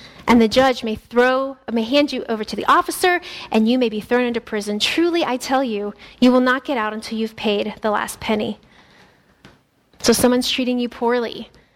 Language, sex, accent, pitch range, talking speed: English, female, American, 225-270 Hz, 200 wpm